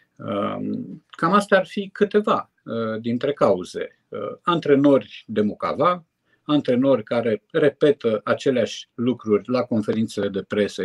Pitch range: 105-165 Hz